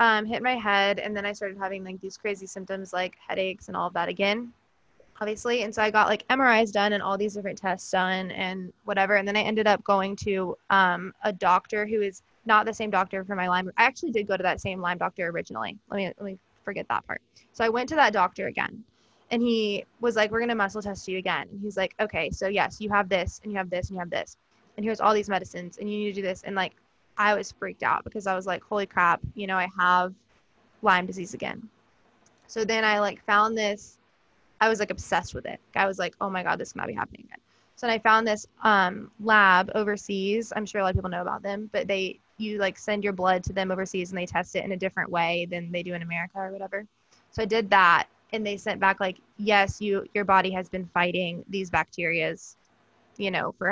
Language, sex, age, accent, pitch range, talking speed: English, female, 20-39, American, 185-215 Hz, 250 wpm